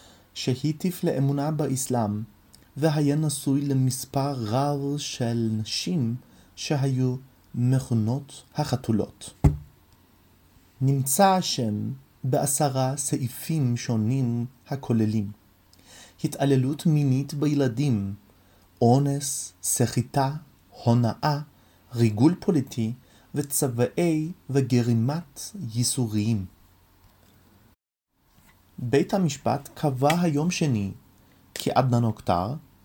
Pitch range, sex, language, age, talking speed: 100-145 Hz, male, Hebrew, 30-49, 65 wpm